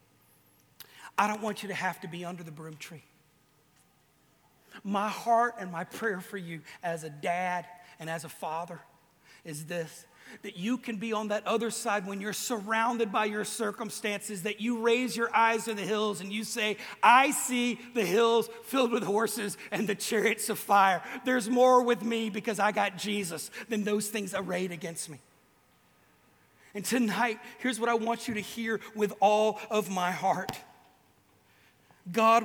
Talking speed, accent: 175 wpm, American